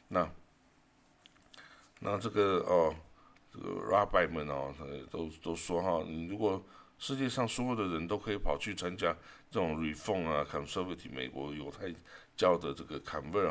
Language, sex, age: Chinese, male, 60-79